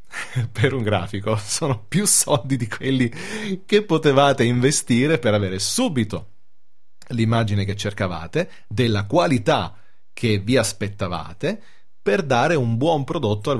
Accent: native